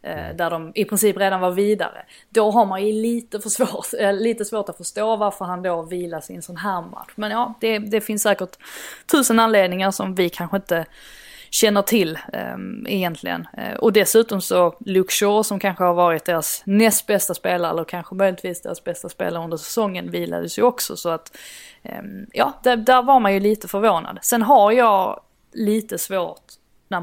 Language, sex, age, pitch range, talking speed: Swedish, female, 20-39, 175-215 Hz, 180 wpm